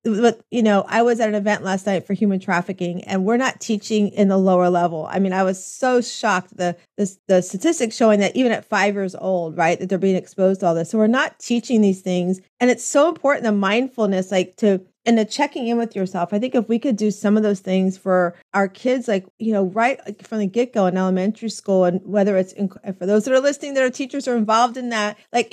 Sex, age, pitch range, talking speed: female, 30-49, 190-235 Hz, 245 wpm